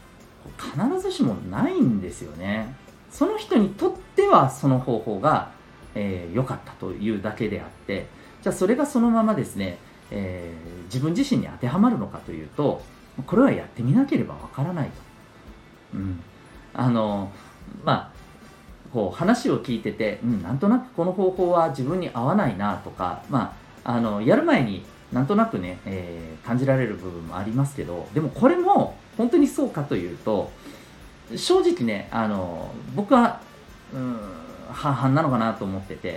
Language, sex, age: Japanese, male, 40-59